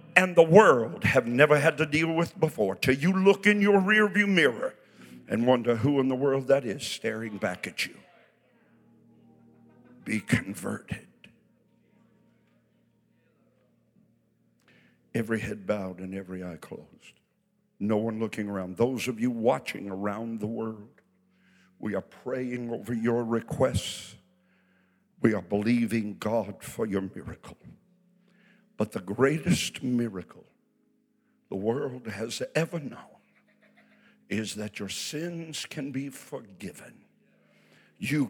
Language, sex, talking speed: English, male, 125 wpm